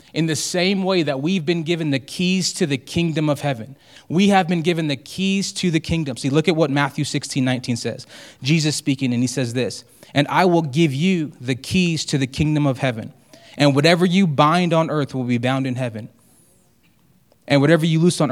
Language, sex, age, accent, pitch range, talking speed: English, male, 20-39, American, 130-160 Hz, 215 wpm